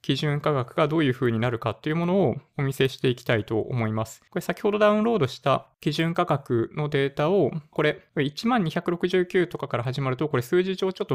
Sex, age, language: male, 20-39, Japanese